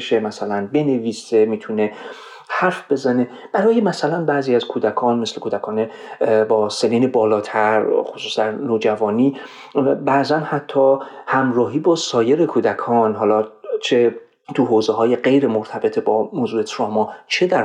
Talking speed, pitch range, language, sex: 115 wpm, 110-150 Hz, Persian, male